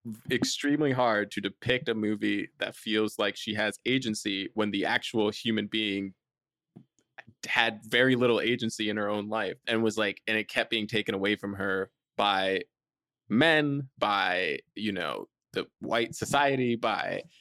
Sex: male